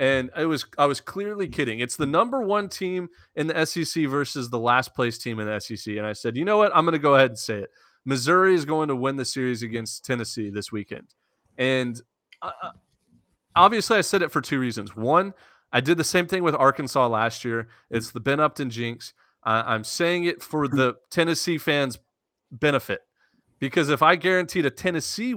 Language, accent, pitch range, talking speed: English, American, 115-160 Hz, 205 wpm